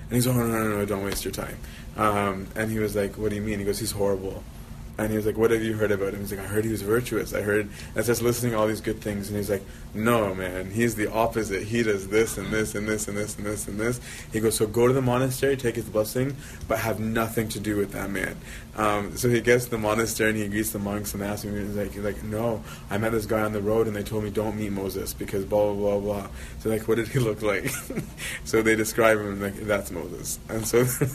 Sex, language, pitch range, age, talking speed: male, English, 100-115 Hz, 20-39, 280 wpm